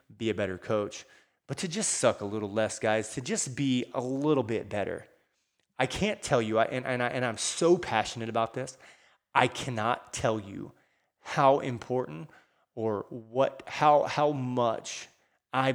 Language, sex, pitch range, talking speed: English, male, 110-130 Hz, 170 wpm